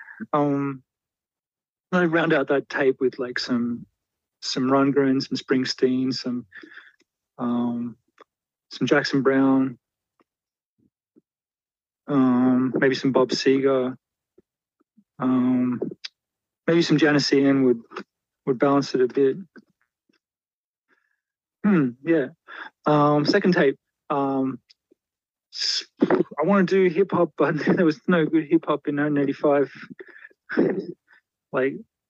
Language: English